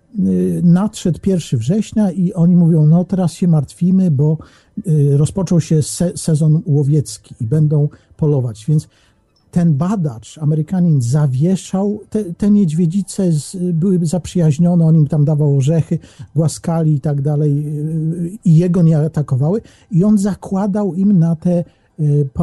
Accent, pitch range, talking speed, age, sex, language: native, 150-185 Hz, 130 wpm, 50-69, male, Polish